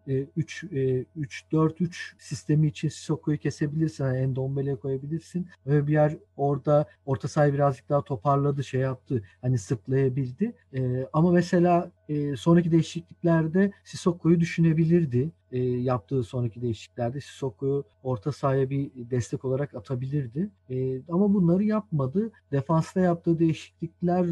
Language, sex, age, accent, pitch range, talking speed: Turkish, male, 50-69, native, 130-165 Hz, 125 wpm